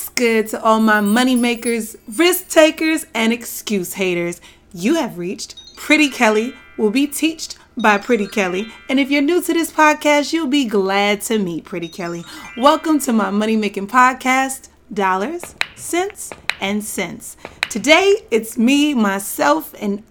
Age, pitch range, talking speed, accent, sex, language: 30-49, 205-285 Hz, 150 wpm, American, female, English